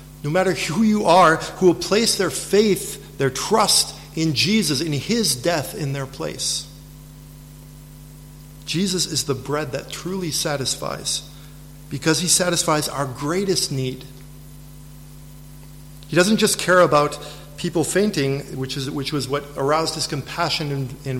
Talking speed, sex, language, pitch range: 140 wpm, male, English, 145-170 Hz